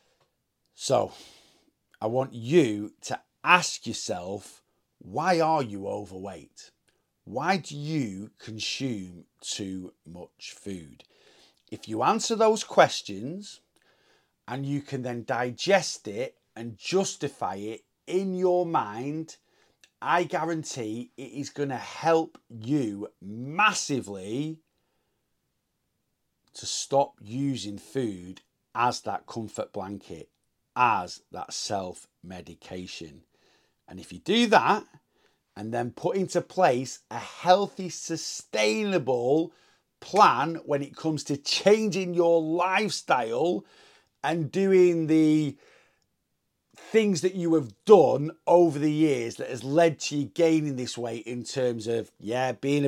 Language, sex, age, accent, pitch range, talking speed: English, male, 40-59, British, 115-170 Hz, 115 wpm